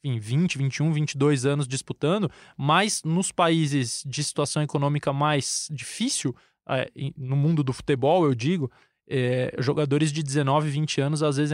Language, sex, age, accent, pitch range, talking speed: Portuguese, male, 20-39, Brazilian, 145-170 Hz, 145 wpm